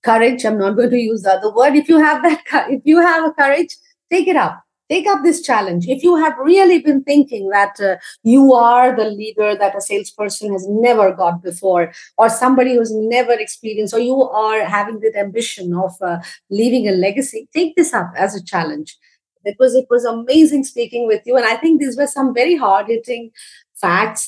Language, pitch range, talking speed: English, 200-280 Hz, 205 wpm